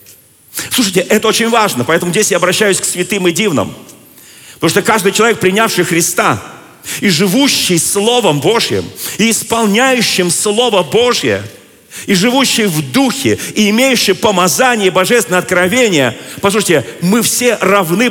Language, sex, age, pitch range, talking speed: Russian, male, 40-59, 140-220 Hz, 135 wpm